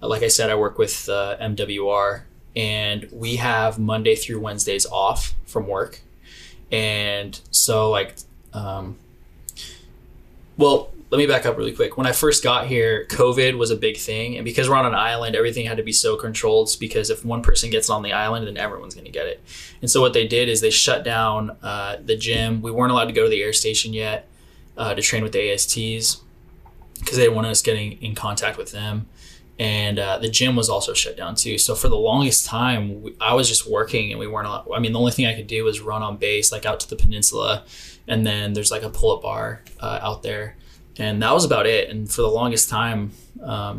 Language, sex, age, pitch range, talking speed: English, male, 20-39, 105-125 Hz, 220 wpm